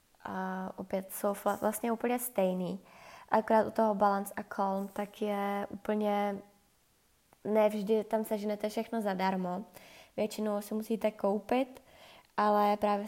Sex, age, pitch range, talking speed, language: female, 20-39, 190-215 Hz, 125 wpm, Czech